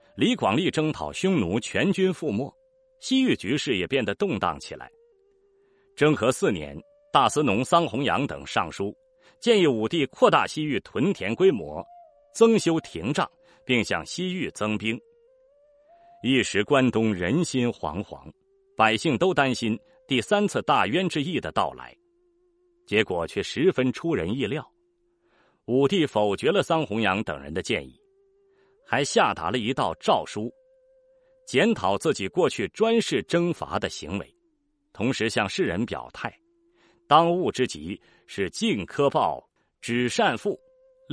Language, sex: Chinese, male